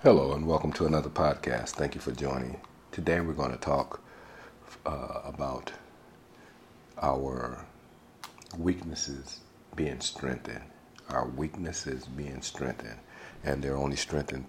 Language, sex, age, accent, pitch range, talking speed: English, male, 50-69, American, 65-75 Hz, 120 wpm